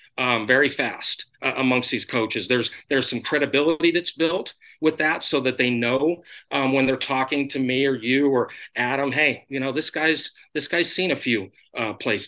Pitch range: 125-155 Hz